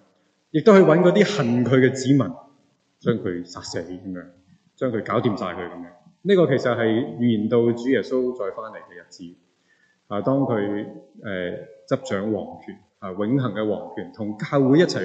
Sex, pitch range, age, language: male, 95-125 Hz, 20-39, Chinese